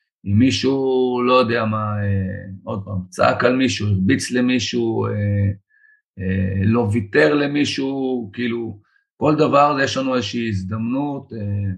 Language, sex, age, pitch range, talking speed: Hebrew, male, 30-49, 100-130 Hz, 125 wpm